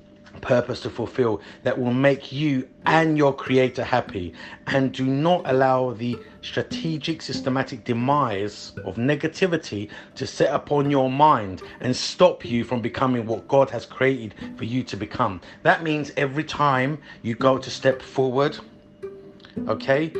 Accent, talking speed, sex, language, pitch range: British, 145 wpm, male, English, 120-145 Hz